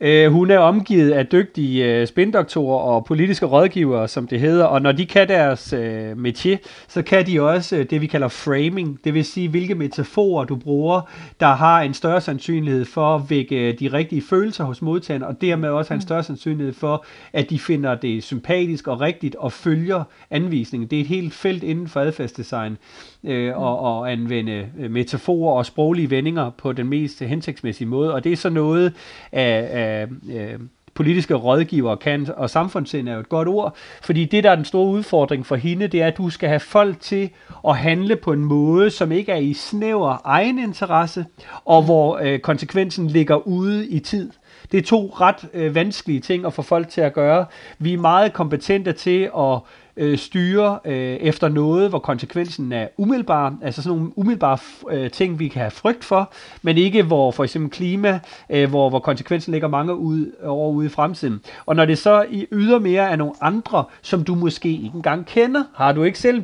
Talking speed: 195 wpm